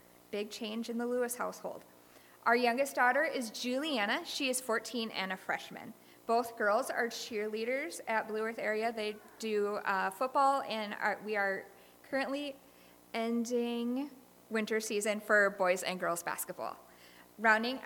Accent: American